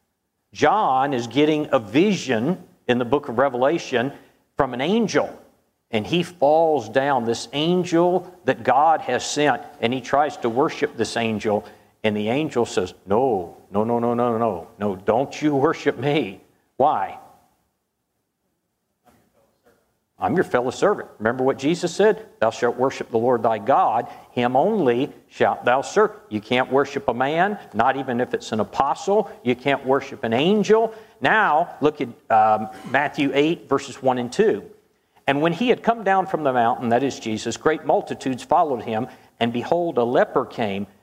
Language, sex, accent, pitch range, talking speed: English, male, American, 115-150 Hz, 165 wpm